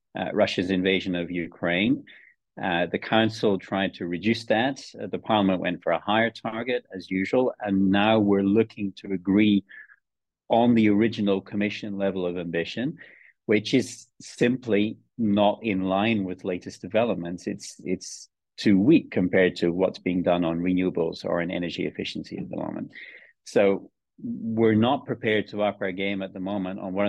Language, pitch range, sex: English, 95-110 Hz, male